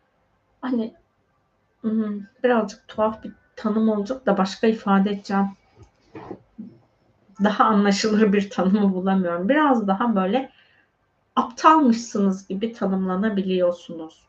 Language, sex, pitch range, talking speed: Turkish, female, 195-255 Hz, 90 wpm